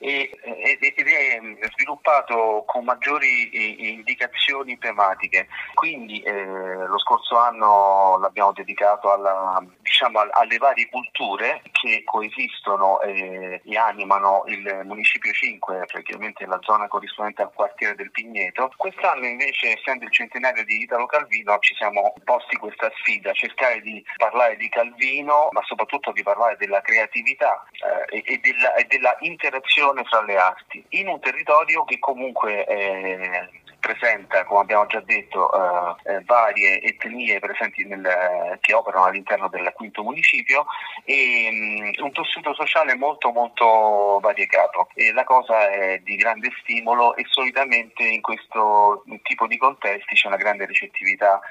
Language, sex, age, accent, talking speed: Italian, male, 30-49, native, 130 wpm